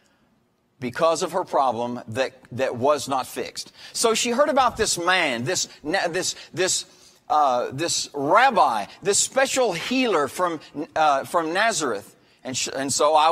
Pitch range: 140-205 Hz